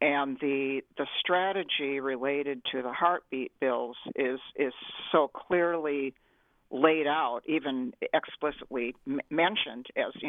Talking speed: 120 wpm